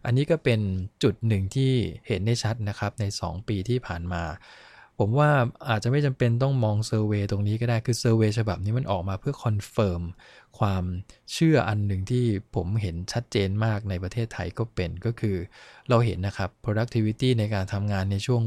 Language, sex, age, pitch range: English, male, 20-39, 100-120 Hz